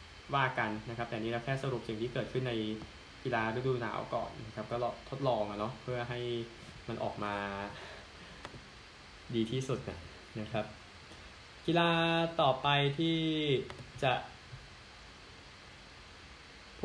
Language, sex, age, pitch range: Thai, male, 10-29, 110-140 Hz